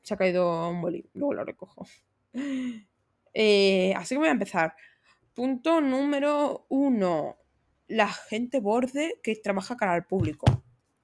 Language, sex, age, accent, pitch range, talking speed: Spanish, female, 20-39, Spanish, 190-255 Hz, 135 wpm